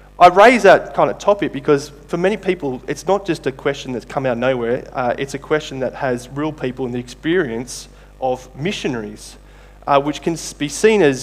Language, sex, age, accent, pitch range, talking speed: English, male, 20-39, Australian, 130-180 Hz, 210 wpm